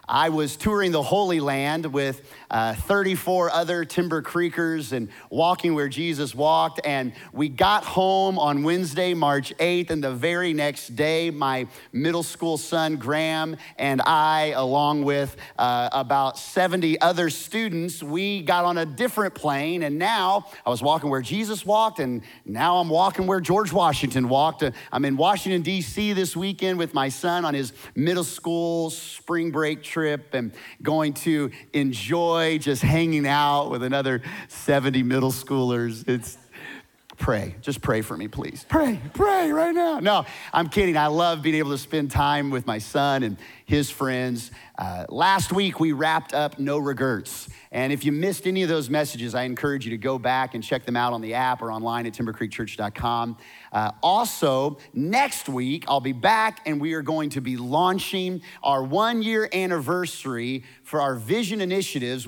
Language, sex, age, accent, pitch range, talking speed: English, male, 30-49, American, 135-175 Hz, 170 wpm